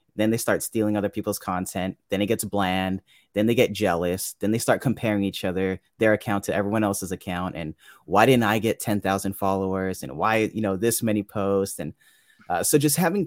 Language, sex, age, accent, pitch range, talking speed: English, male, 30-49, American, 100-135 Hz, 210 wpm